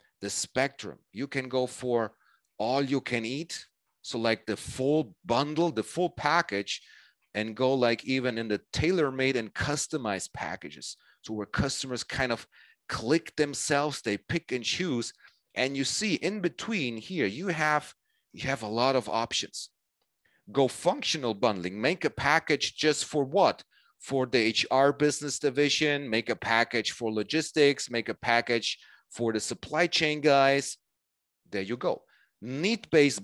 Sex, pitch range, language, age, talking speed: male, 115-155 Hz, Russian, 40-59, 150 wpm